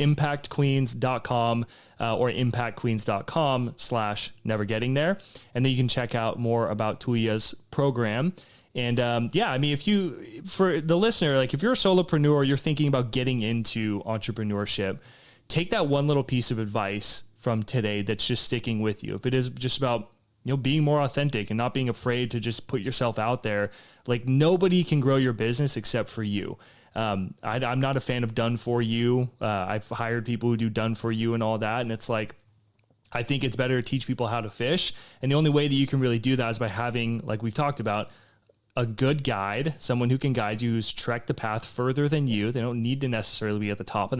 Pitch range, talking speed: 115-140 Hz, 215 wpm